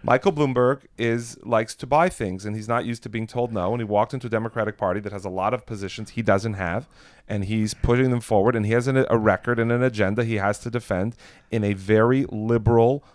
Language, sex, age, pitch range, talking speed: English, male, 30-49, 110-140 Hz, 240 wpm